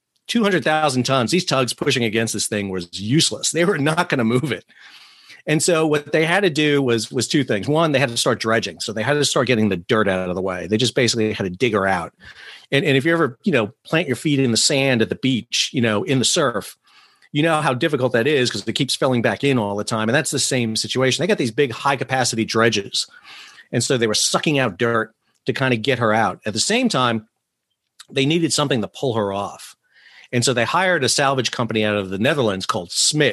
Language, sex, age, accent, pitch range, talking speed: English, male, 40-59, American, 110-145 Hz, 250 wpm